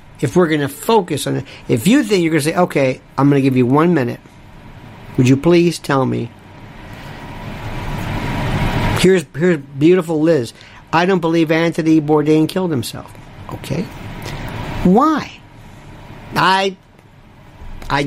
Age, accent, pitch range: 50-69, American, 140-230 Hz